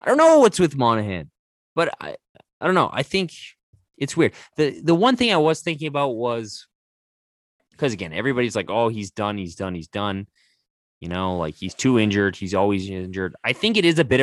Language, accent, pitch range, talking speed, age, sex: English, American, 95-130 Hz, 210 wpm, 20-39, male